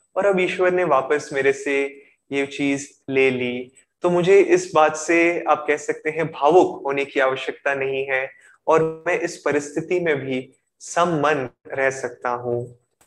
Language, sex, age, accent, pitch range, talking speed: Hindi, male, 20-39, native, 140-175 Hz, 165 wpm